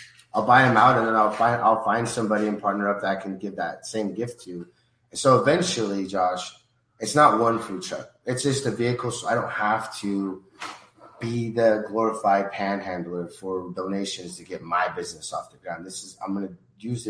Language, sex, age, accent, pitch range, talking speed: English, male, 30-49, American, 95-115 Hz, 200 wpm